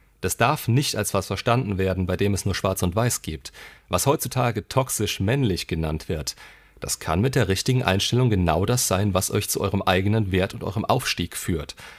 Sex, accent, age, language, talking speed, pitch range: male, German, 40-59, German, 195 wpm, 95-120 Hz